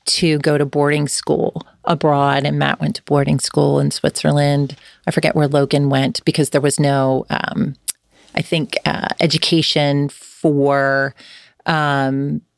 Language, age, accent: English, 40-59, American